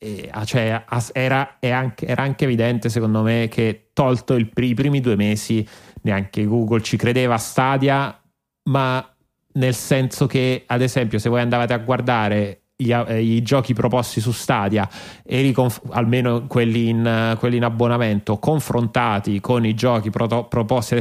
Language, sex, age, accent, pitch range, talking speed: Italian, male, 30-49, native, 110-130 Hz, 145 wpm